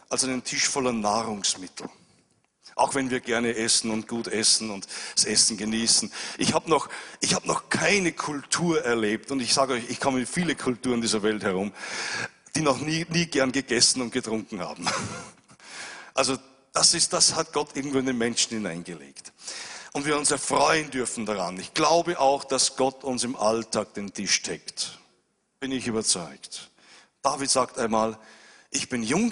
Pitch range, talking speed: 110-140 Hz, 170 wpm